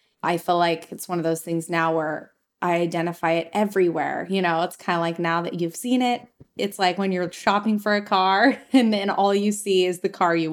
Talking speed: 240 wpm